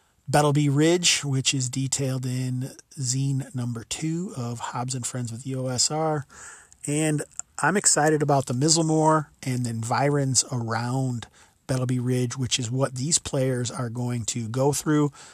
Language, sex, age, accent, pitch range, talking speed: English, male, 40-59, American, 130-150 Hz, 150 wpm